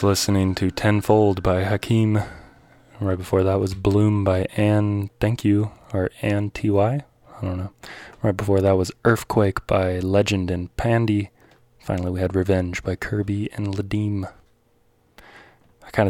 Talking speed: 150 wpm